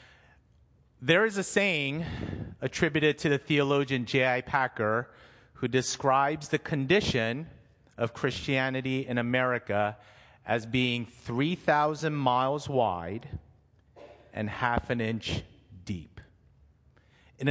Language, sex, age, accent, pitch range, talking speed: English, male, 40-59, American, 120-155 Hz, 100 wpm